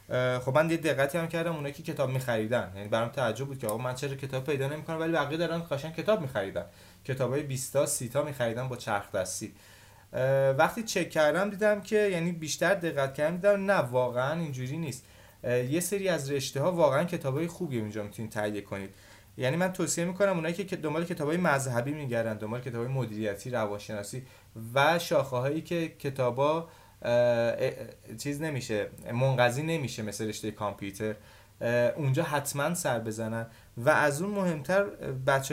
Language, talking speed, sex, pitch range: Persian, 160 wpm, male, 115-155 Hz